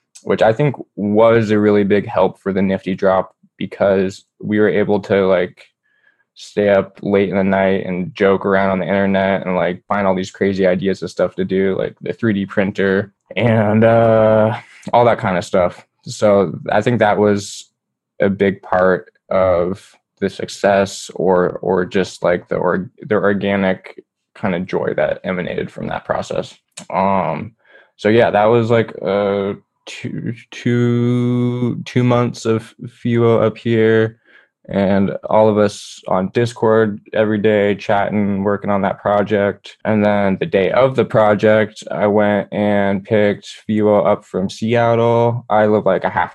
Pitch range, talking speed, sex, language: 95-110 Hz, 165 wpm, male, English